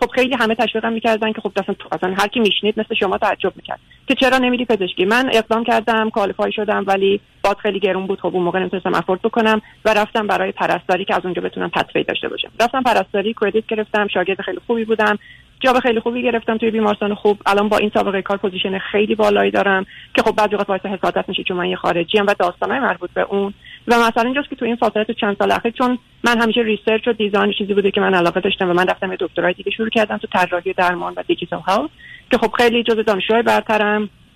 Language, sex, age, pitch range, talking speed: Persian, female, 30-49, 195-230 Hz, 220 wpm